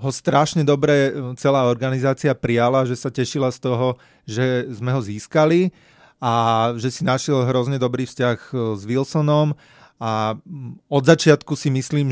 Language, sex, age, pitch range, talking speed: Slovak, male, 30-49, 125-145 Hz, 145 wpm